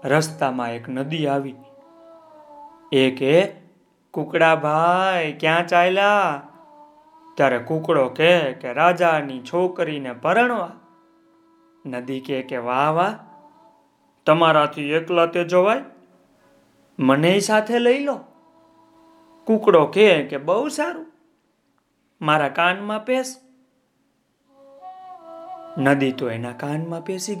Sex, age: male, 30-49